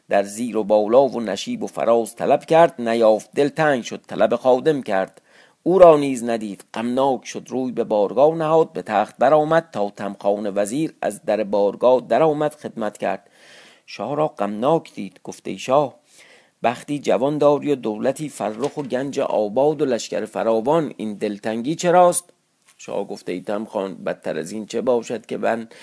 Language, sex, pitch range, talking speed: Persian, male, 105-145 Hz, 165 wpm